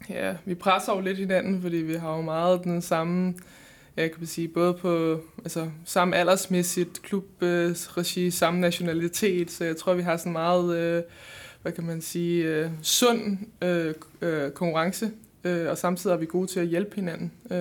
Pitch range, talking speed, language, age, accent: 165-185 Hz, 155 wpm, Danish, 20-39, native